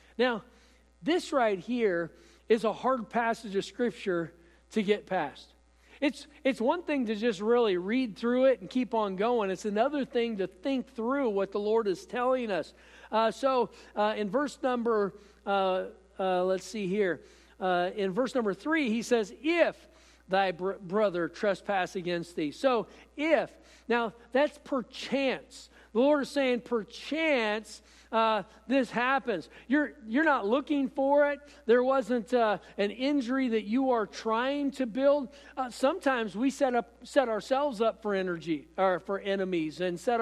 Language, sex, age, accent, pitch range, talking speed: English, male, 50-69, American, 205-265 Hz, 160 wpm